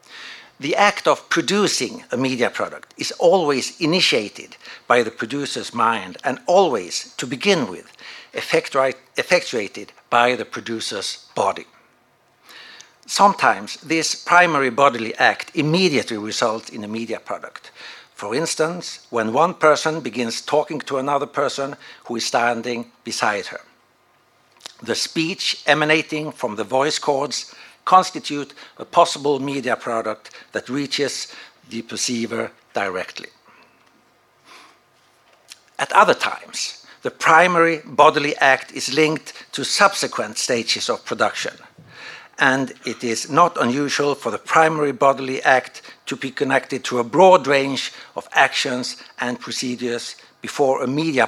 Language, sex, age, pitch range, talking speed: French, male, 60-79, 120-155 Hz, 125 wpm